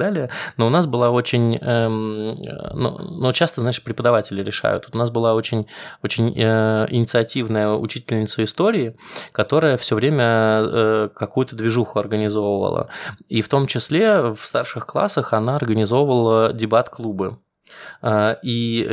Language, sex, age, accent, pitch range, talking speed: Russian, male, 20-39, native, 110-125 Hz, 115 wpm